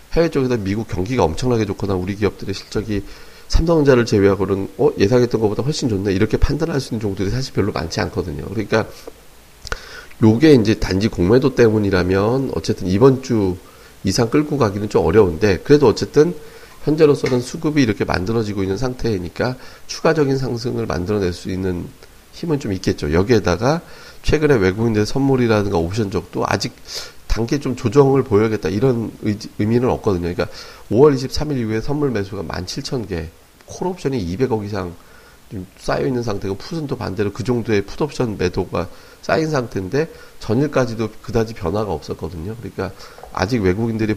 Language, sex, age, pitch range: Korean, male, 40-59, 95-130 Hz